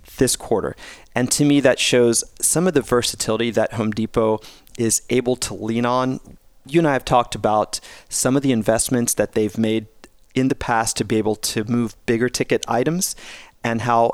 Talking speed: 190 wpm